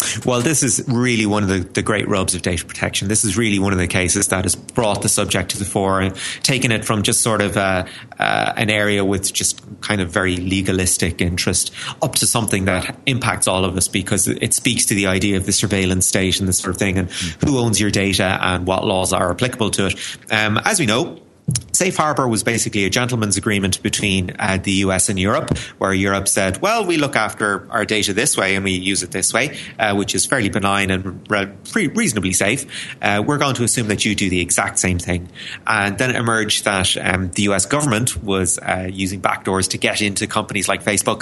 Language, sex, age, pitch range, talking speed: English, male, 30-49, 95-110 Hz, 225 wpm